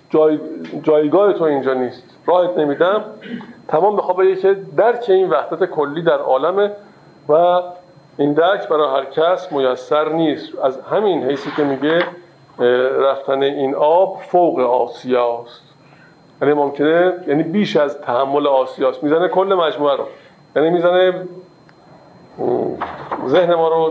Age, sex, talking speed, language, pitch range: 50-69, male, 135 wpm, Persian, 140-180 Hz